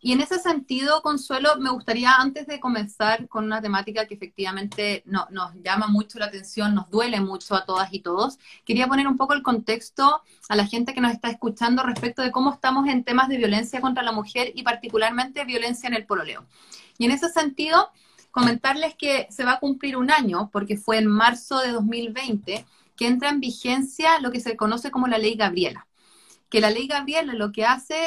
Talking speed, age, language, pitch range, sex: 205 wpm, 30-49, Spanish, 215-265 Hz, female